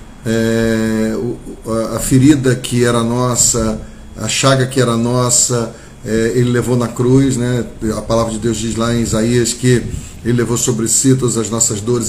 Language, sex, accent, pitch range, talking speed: Portuguese, male, Brazilian, 115-125 Hz, 160 wpm